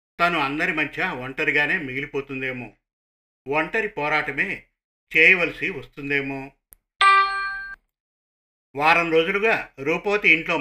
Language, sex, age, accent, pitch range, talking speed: Telugu, male, 50-69, native, 140-170 Hz, 75 wpm